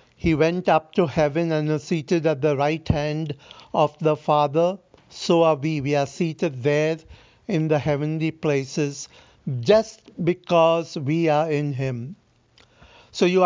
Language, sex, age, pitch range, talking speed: Hindi, male, 60-79, 150-180 Hz, 150 wpm